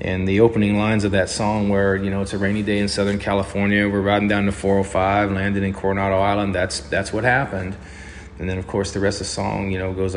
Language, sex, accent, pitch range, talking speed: English, male, American, 90-100 Hz, 250 wpm